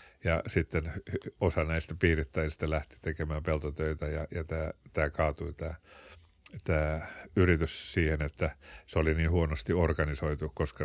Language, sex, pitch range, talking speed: Finnish, male, 75-85 Hz, 135 wpm